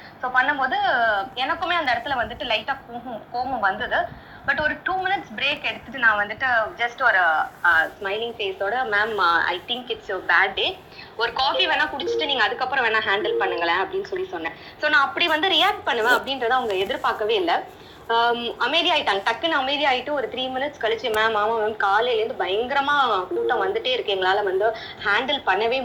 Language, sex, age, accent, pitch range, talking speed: Tamil, female, 20-39, native, 190-295 Hz, 55 wpm